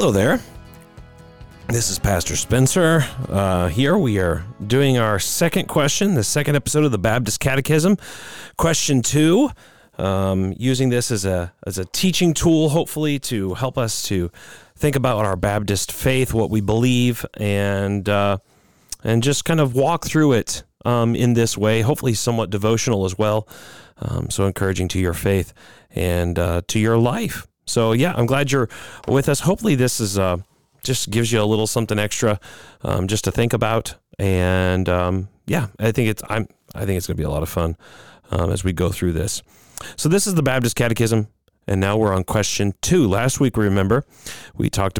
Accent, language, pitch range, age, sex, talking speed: American, English, 95-135 Hz, 30-49, male, 180 wpm